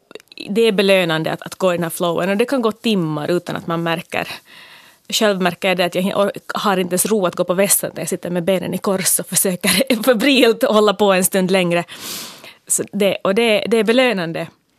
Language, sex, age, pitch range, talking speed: Finnish, female, 30-49, 175-215 Hz, 220 wpm